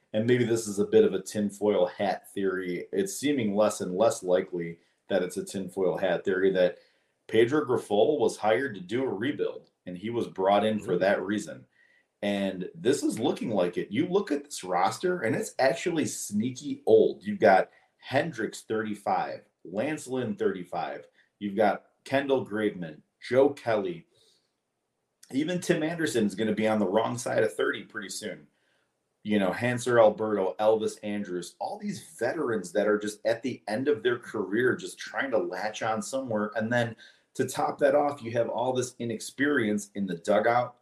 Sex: male